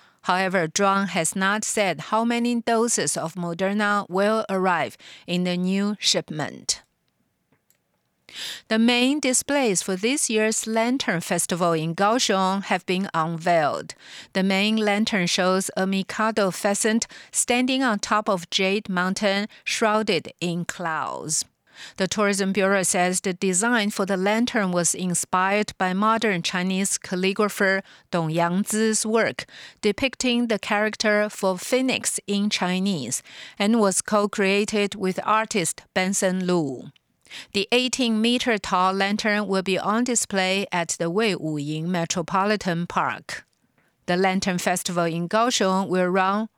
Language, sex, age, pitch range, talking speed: English, female, 50-69, 185-215 Hz, 130 wpm